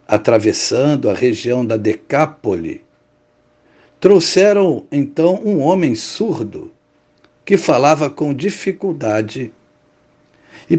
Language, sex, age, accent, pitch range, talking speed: Portuguese, male, 60-79, Brazilian, 140-180 Hz, 85 wpm